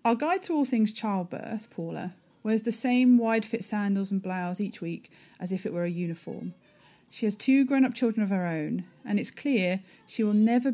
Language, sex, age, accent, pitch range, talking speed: English, female, 40-59, British, 190-250 Hz, 210 wpm